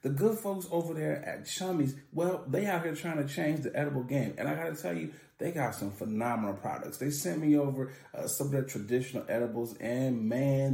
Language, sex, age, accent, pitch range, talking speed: English, male, 30-49, American, 120-170 Hz, 225 wpm